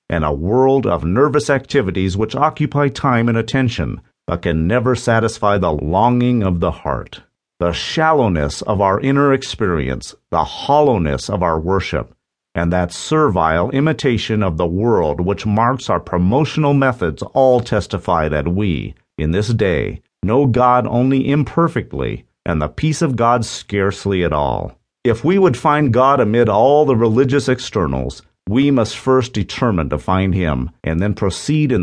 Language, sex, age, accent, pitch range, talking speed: English, male, 50-69, American, 90-135 Hz, 155 wpm